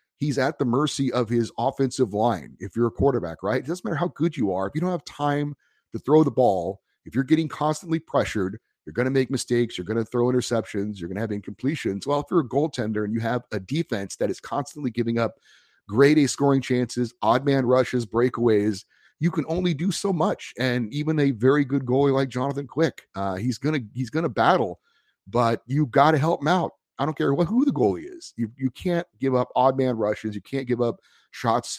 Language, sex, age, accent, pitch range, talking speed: English, male, 30-49, American, 115-145 Hz, 225 wpm